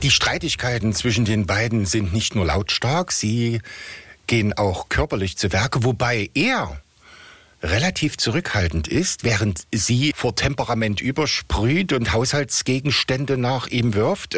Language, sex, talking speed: German, male, 125 wpm